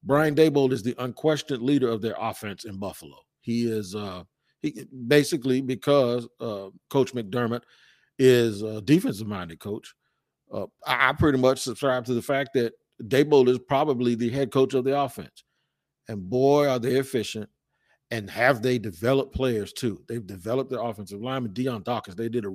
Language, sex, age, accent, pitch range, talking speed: English, male, 40-59, American, 110-130 Hz, 170 wpm